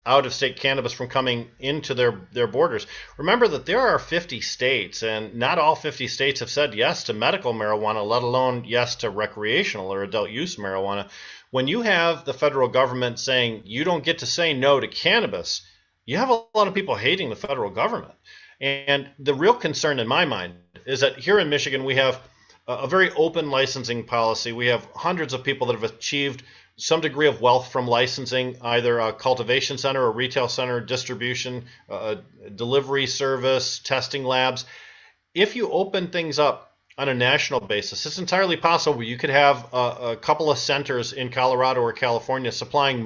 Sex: male